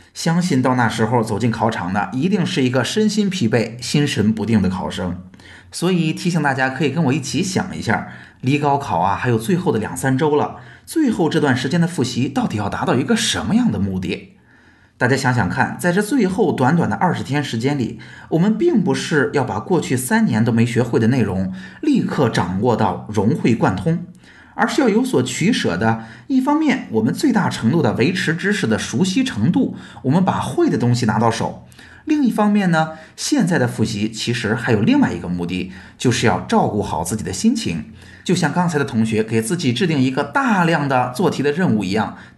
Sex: male